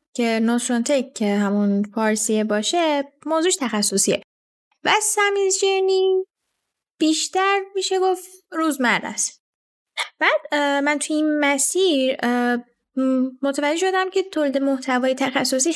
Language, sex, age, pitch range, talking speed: Persian, female, 10-29, 225-295 Hz, 105 wpm